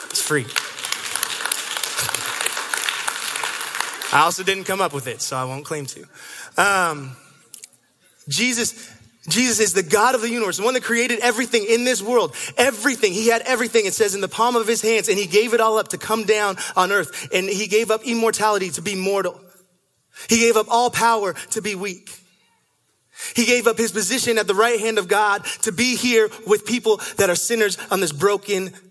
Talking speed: 190 wpm